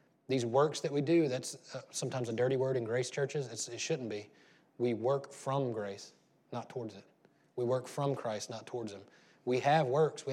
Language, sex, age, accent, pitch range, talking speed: English, male, 30-49, American, 130-165 Hz, 205 wpm